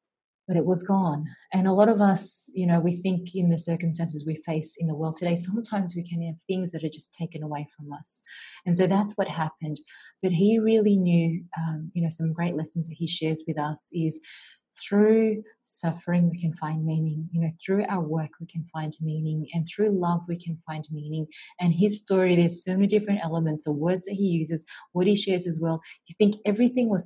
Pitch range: 160-195 Hz